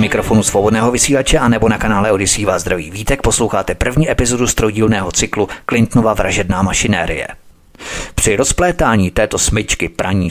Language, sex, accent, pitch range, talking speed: Czech, male, native, 100-125 Hz, 130 wpm